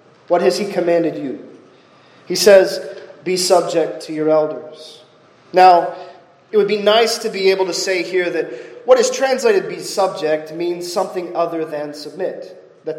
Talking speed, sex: 160 wpm, male